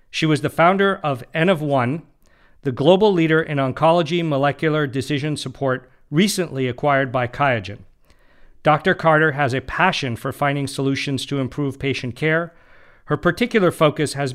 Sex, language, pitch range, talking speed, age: male, English, 135-165 Hz, 150 wpm, 50-69